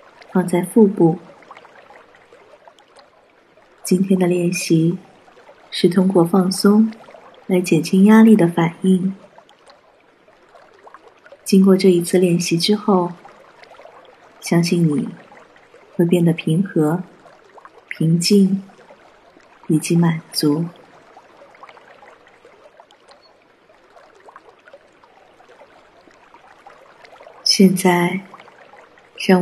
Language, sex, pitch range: Chinese, female, 175-195 Hz